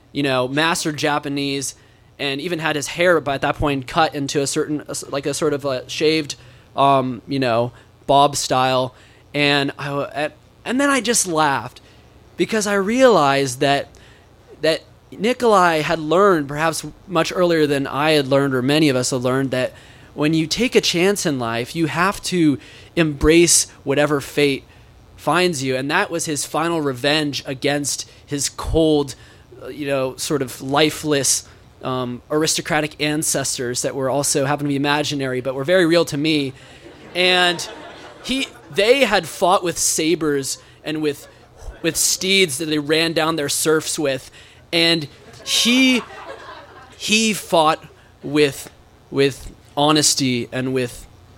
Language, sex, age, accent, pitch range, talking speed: English, male, 20-39, American, 130-155 Hz, 150 wpm